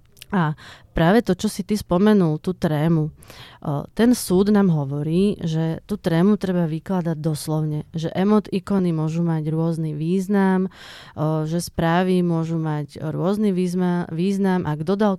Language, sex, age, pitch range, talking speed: Czech, female, 30-49, 155-180 Hz, 140 wpm